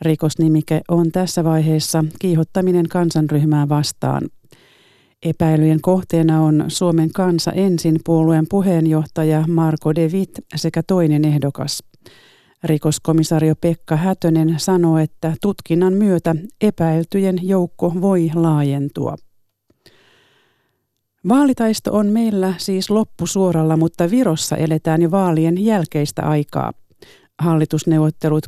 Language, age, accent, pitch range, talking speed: Finnish, 40-59, native, 155-185 Hz, 95 wpm